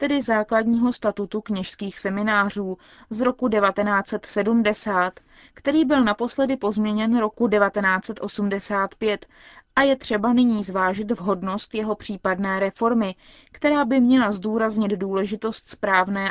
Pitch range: 190-230 Hz